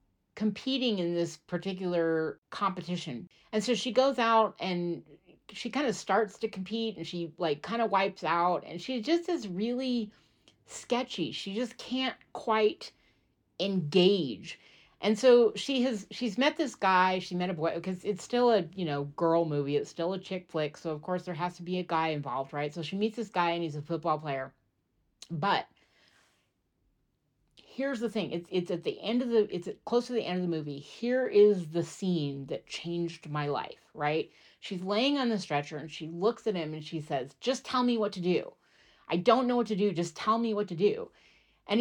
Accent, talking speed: American, 200 wpm